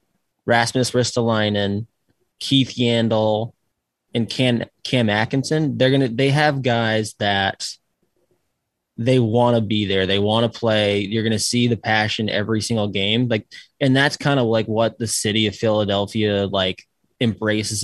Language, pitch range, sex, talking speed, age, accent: English, 105-130 Hz, male, 145 wpm, 20-39, American